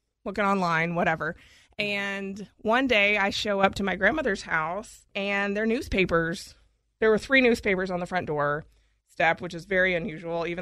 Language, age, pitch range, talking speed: English, 20-39, 175-215 Hz, 170 wpm